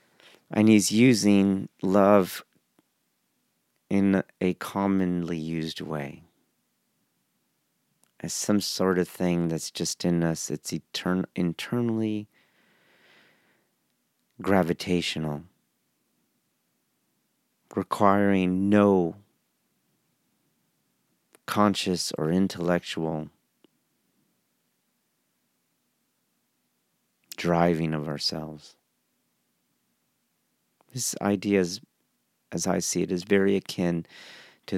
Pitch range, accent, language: 85-105 Hz, American, English